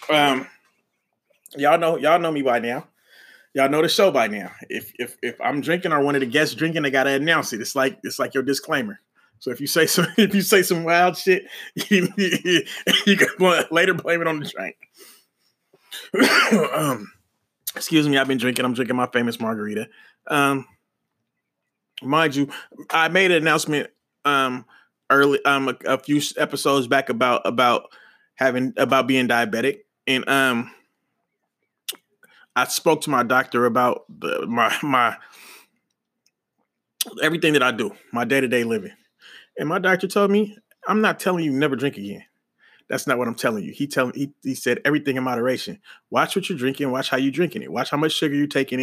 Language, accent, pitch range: English, American, 130-180 Hz